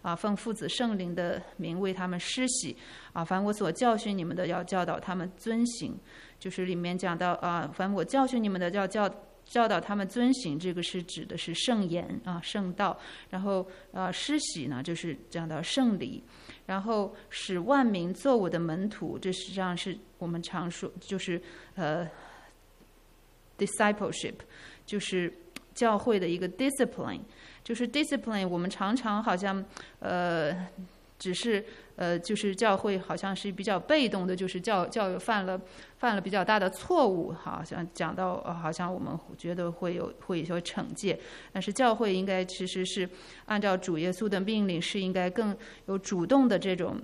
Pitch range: 175-210 Hz